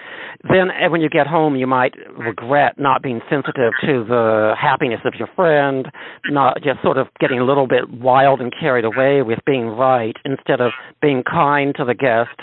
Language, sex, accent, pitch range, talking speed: English, male, American, 120-140 Hz, 190 wpm